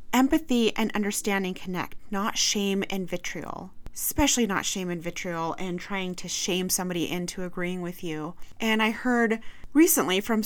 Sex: female